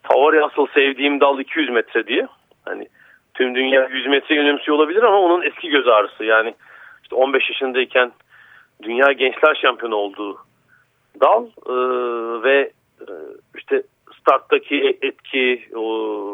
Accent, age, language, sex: native, 40-59, Turkish, male